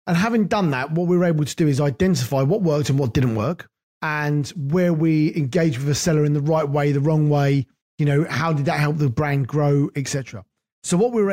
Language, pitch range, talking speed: English, 140-175 Hz, 250 wpm